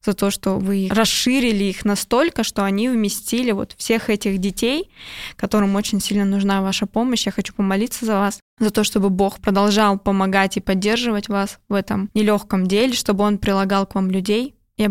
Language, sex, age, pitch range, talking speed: Russian, female, 20-39, 195-215 Hz, 175 wpm